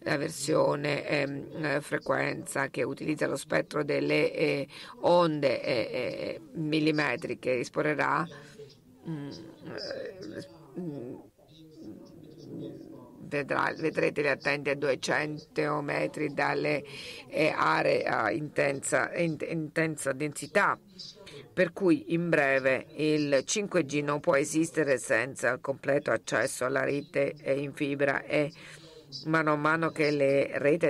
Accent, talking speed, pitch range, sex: native, 110 wpm, 145-165 Hz, female